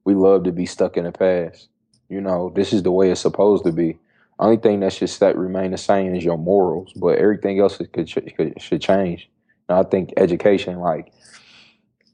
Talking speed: 215 wpm